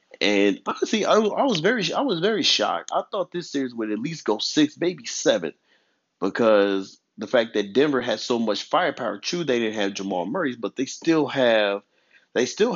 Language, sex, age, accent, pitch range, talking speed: English, male, 30-49, American, 105-150 Hz, 200 wpm